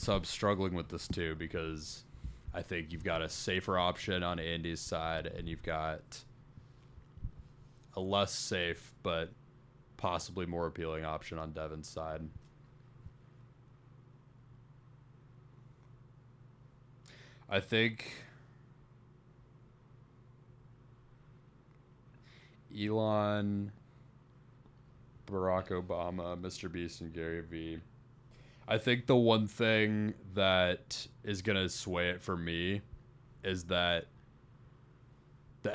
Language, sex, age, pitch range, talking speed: English, male, 20-39, 90-130 Hz, 95 wpm